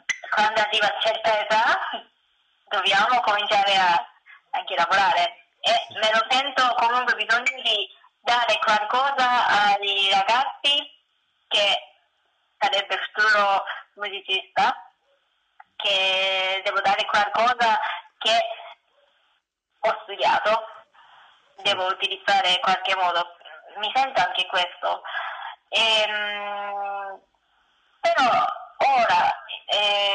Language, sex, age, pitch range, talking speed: Italian, female, 20-39, 195-245 Hz, 90 wpm